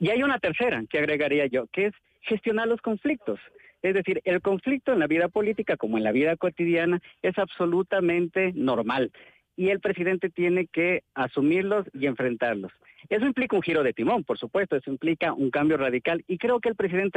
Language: Spanish